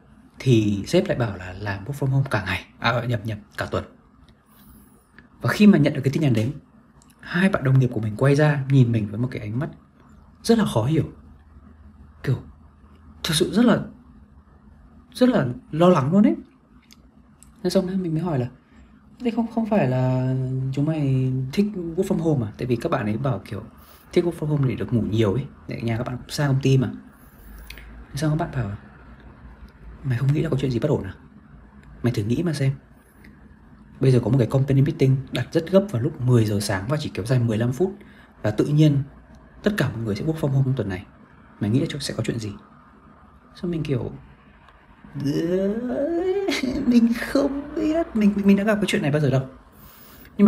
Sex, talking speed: male, 210 wpm